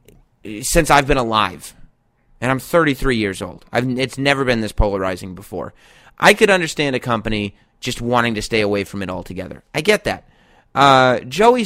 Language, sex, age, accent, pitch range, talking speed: English, male, 30-49, American, 110-145 Hz, 175 wpm